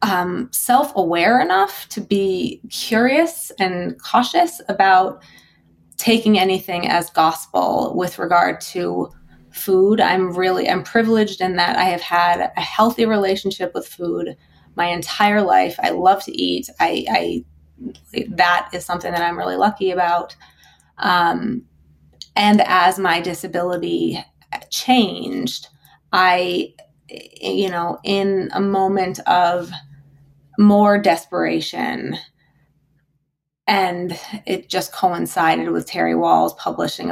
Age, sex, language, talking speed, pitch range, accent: 20-39, female, English, 115 wpm, 150-200 Hz, American